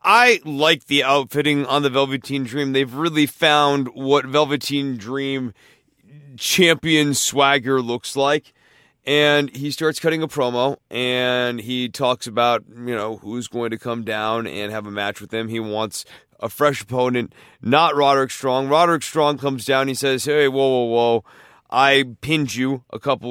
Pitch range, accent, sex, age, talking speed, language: 120-150 Hz, American, male, 30-49, 165 wpm, English